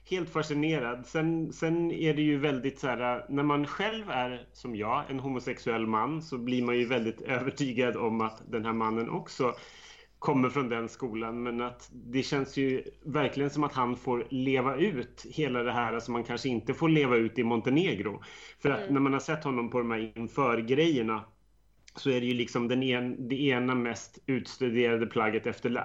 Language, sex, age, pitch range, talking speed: Swedish, male, 30-49, 120-150 Hz, 195 wpm